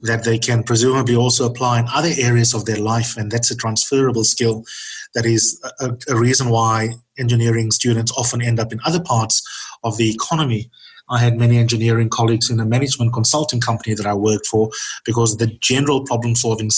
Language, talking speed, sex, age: English, 185 wpm, male, 30-49